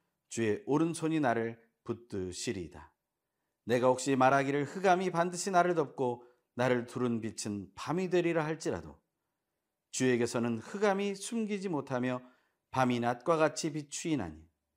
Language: Korean